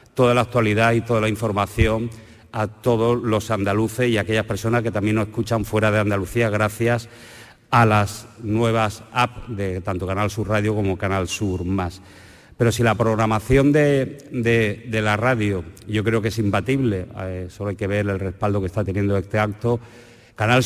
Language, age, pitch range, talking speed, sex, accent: Spanish, 50-69, 105-120 Hz, 180 wpm, male, Spanish